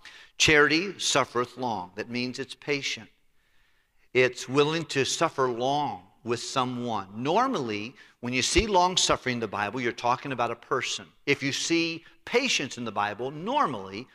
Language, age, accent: English, 50-69, American